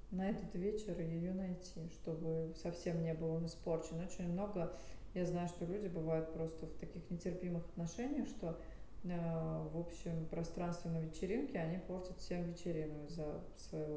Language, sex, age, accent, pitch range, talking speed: Russian, female, 20-39, native, 165-195 Hz, 150 wpm